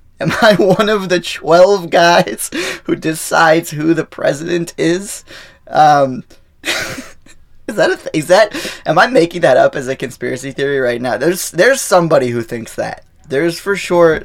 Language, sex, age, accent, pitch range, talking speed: English, male, 20-39, American, 105-165 Hz, 170 wpm